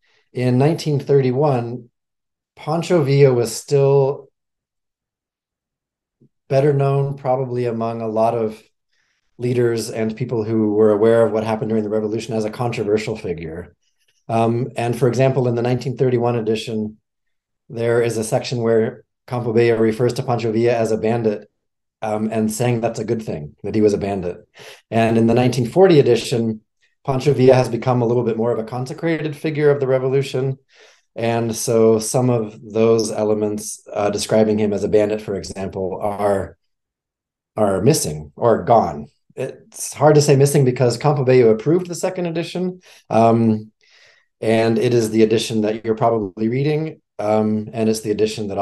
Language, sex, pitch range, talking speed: English, male, 110-130 Hz, 160 wpm